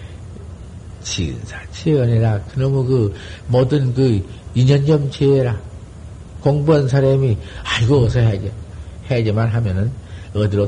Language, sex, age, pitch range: Korean, male, 50-69, 95-125 Hz